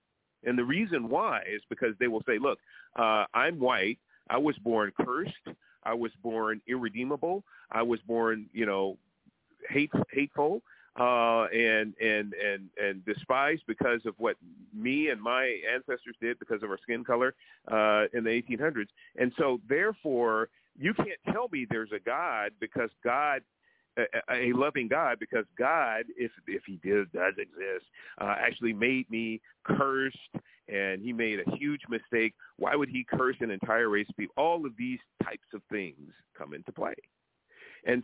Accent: American